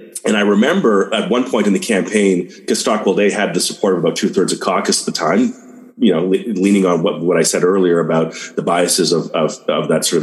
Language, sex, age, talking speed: English, male, 30-49, 240 wpm